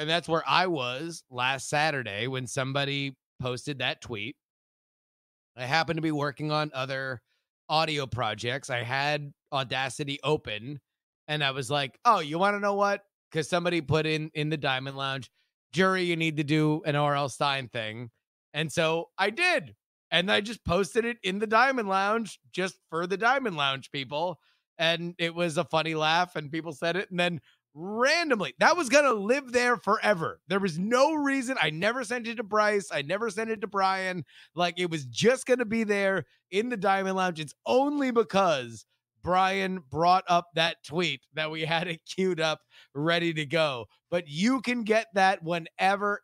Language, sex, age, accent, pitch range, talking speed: English, male, 30-49, American, 145-195 Hz, 185 wpm